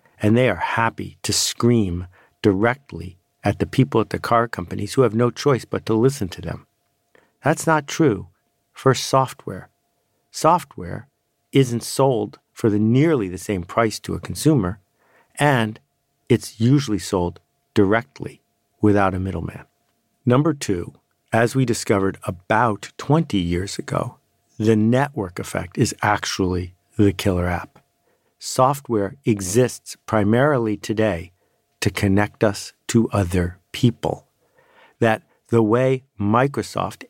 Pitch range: 100-125 Hz